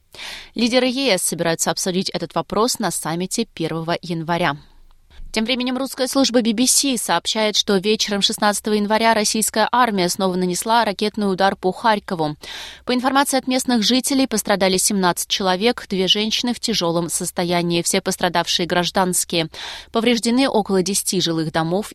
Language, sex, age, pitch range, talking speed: Russian, female, 20-39, 175-225 Hz, 135 wpm